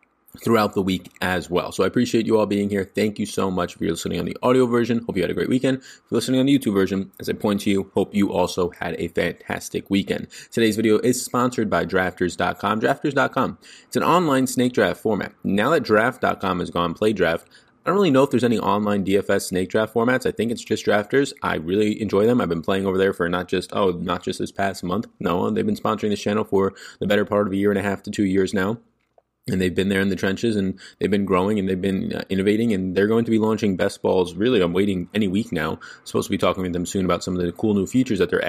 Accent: American